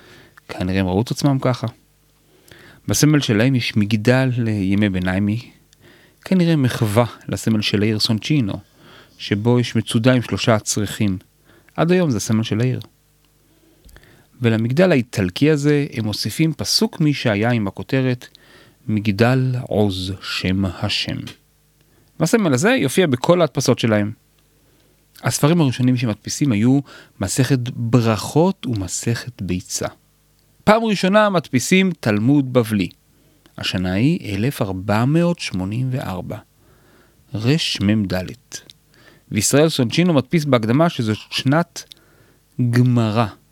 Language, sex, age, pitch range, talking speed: Hebrew, male, 30-49, 105-140 Hz, 100 wpm